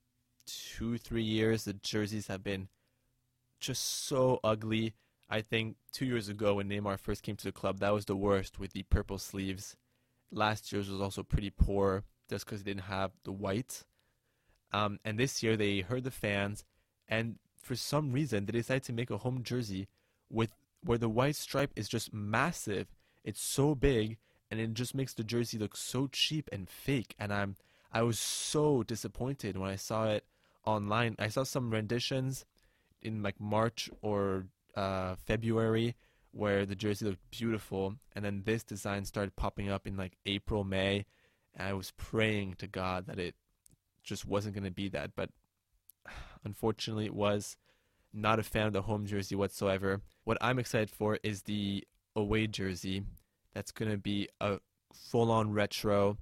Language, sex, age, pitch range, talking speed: English, male, 20-39, 100-115 Hz, 175 wpm